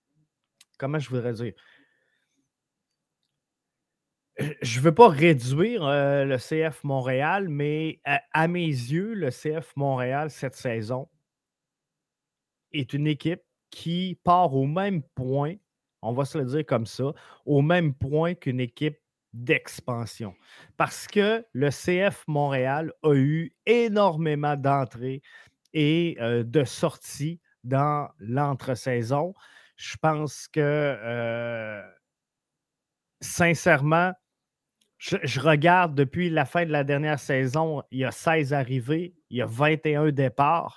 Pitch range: 130-165 Hz